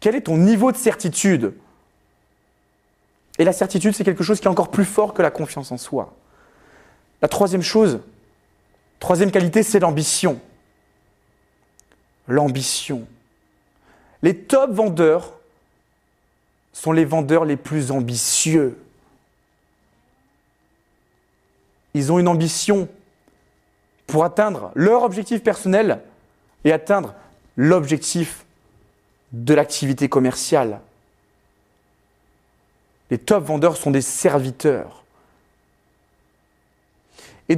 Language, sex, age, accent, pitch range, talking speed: French, male, 40-59, French, 135-215 Hz, 100 wpm